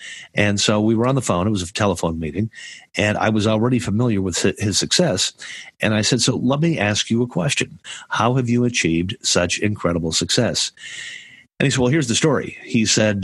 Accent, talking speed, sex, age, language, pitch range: American, 210 wpm, male, 50-69, English, 95-120 Hz